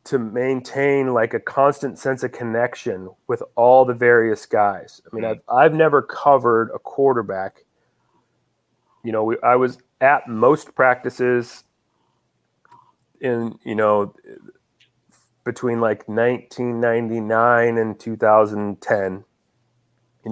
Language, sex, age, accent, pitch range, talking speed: English, male, 30-49, American, 110-135 Hz, 110 wpm